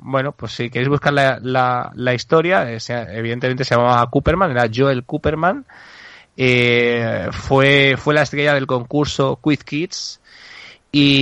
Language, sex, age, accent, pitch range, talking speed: Spanish, male, 20-39, Spanish, 120-140 Hz, 145 wpm